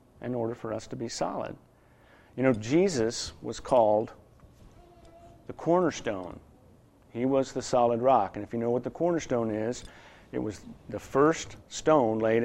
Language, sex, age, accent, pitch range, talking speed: English, male, 50-69, American, 115-140 Hz, 160 wpm